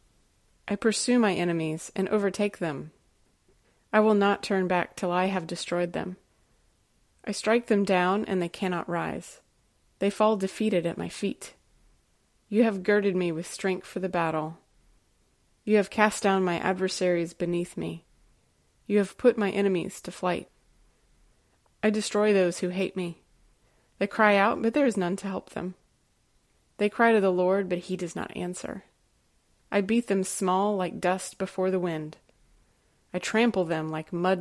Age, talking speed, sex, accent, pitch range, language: 30-49, 165 wpm, female, American, 175-205 Hz, English